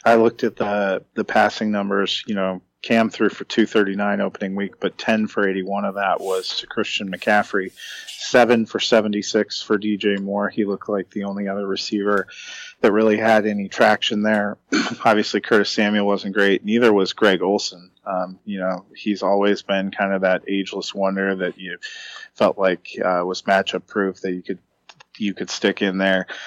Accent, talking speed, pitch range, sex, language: American, 180 wpm, 95-105 Hz, male, English